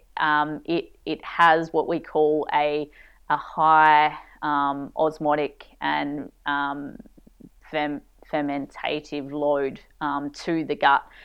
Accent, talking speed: Australian, 110 wpm